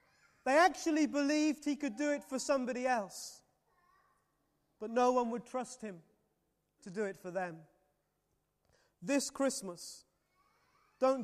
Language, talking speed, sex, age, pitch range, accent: English, 130 wpm, male, 30-49, 230-290 Hz, British